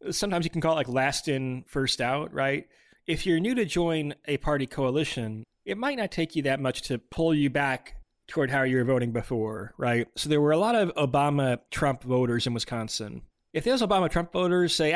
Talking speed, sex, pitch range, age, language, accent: 210 wpm, male, 130-170 Hz, 30-49, English, American